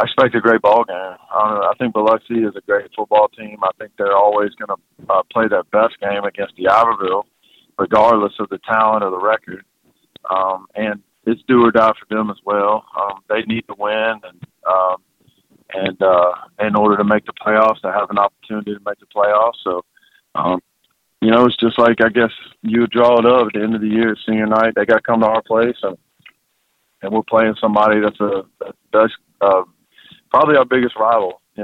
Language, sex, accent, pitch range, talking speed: English, male, American, 105-115 Hz, 215 wpm